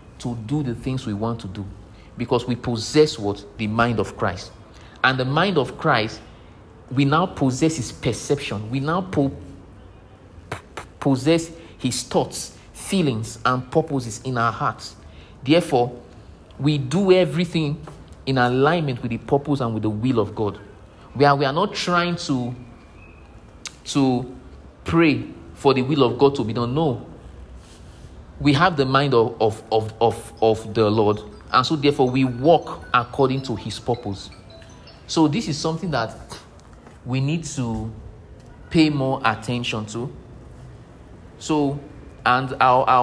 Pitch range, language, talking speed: 105-140 Hz, English, 150 wpm